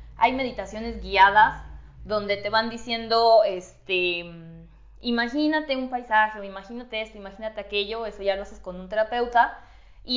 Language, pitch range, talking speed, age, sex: Spanish, 205-255 Hz, 130 wpm, 20-39, female